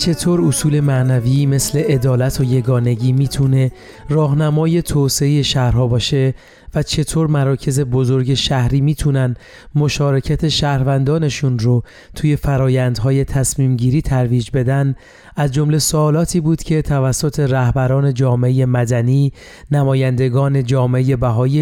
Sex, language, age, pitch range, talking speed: male, Persian, 30-49, 130-150 Hz, 105 wpm